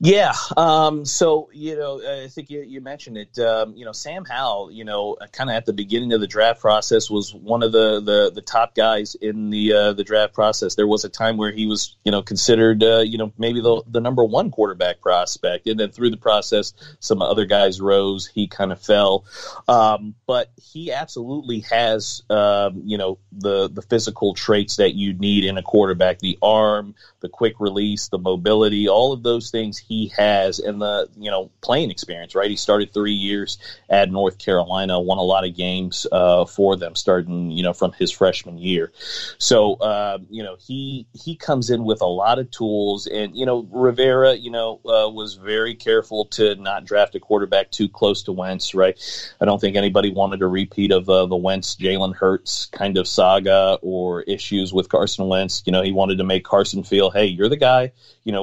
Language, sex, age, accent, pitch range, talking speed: English, male, 40-59, American, 95-115 Hz, 205 wpm